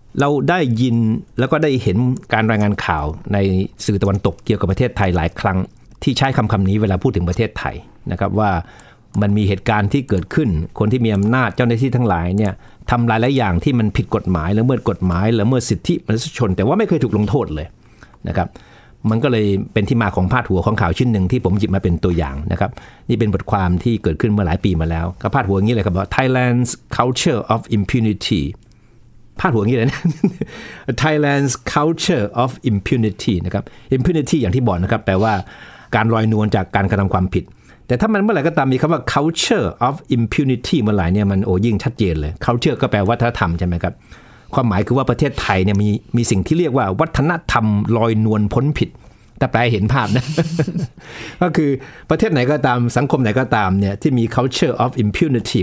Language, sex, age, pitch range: Thai, male, 60-79, 100-130 Hz